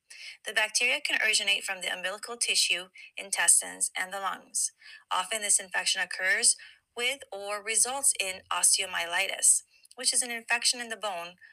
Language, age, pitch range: English, 30-49, 185-250 Hz